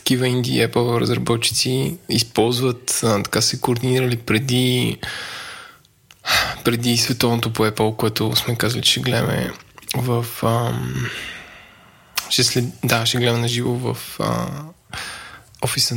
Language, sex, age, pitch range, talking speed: Bulgarian, male, 20-39, 115-130 Hz, 115 wpm